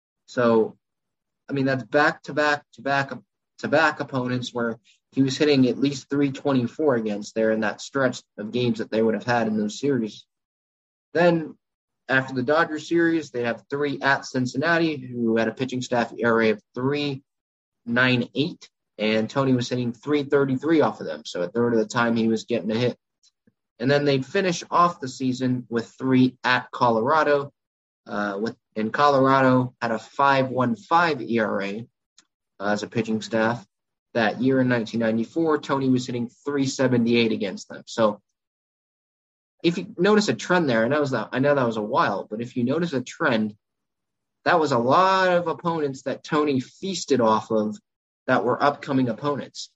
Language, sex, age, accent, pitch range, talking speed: English, male, 20-39, American, 115-145 Hz, 170 wpm